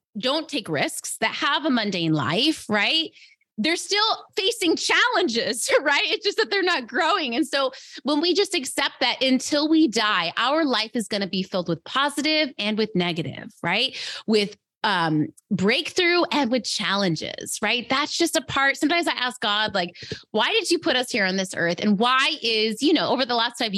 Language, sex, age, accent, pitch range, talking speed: English, female, 20-39, American, 205-290 Hz, 195 wpm